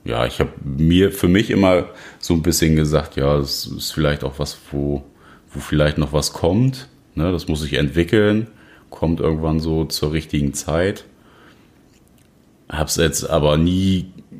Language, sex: German, male